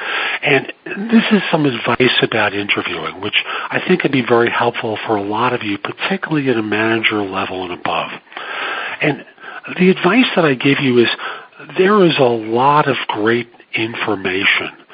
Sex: male